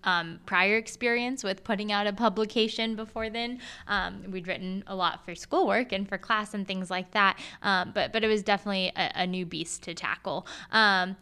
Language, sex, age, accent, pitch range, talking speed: English, female, 10-29, American, 185-210 Hz, 200 wpm